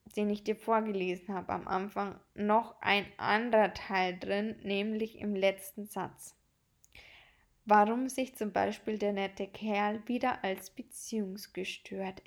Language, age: German, 10-29